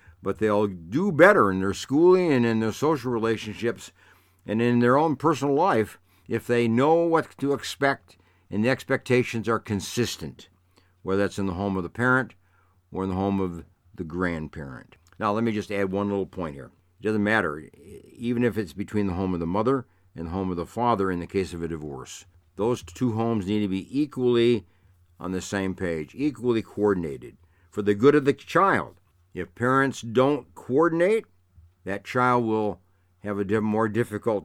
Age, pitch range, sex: 60-79, 90-120 Hz, male